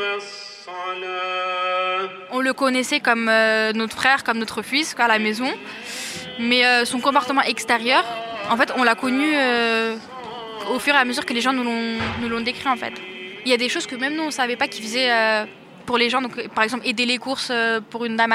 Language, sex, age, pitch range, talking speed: French, female, 10-29, 225-265 Hz, 215 wpm